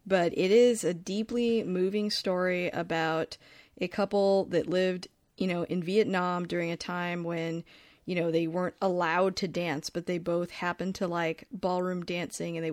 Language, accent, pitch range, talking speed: English, American, 175-195 Hz, 175 wpm